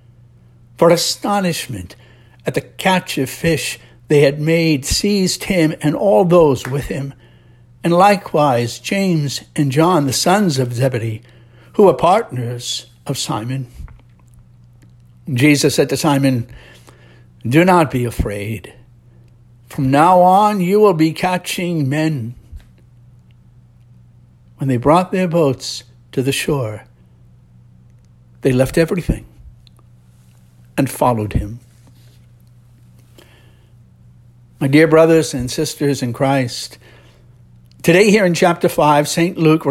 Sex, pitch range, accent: male, 120-160 Hz, American